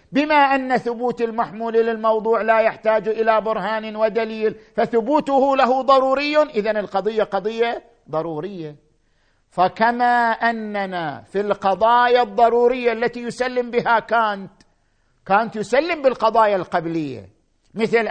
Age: 50-69